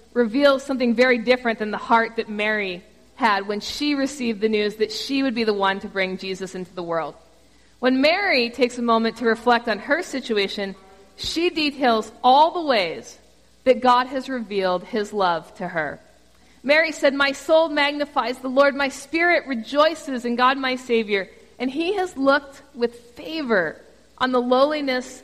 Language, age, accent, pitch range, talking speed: English, 50-69, American, 220-295 Hz, 175 wpm